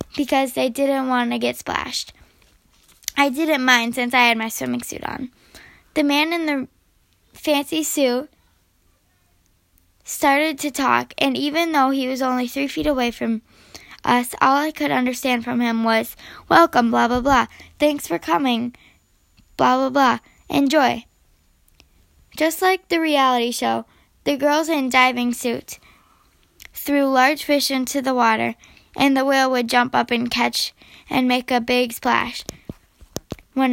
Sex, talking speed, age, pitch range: female, 150 wpm, 10-29, 240-280 Hz